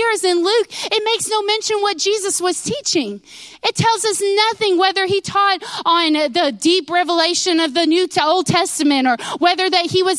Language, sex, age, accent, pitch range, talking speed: English, female, 30-49, American, 305-380 Hz, 200 wpm